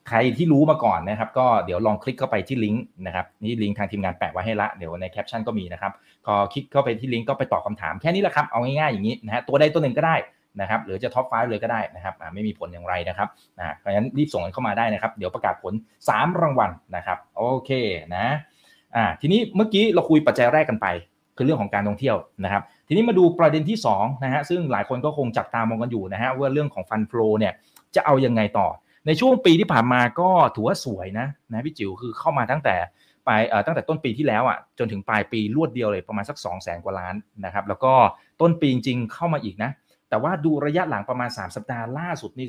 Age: 20-39